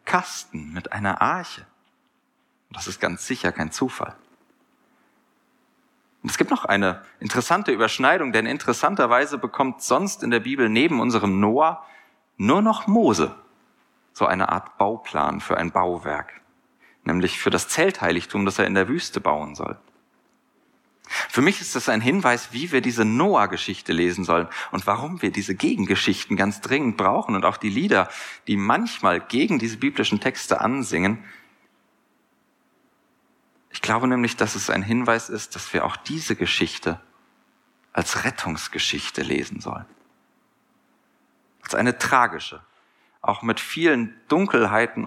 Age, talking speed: 40-59, 135 wpm